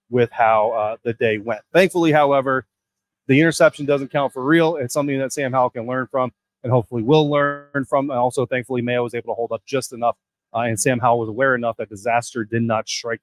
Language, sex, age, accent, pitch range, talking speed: English, male, 30-49, American, 125-155 Hz, 225 wpm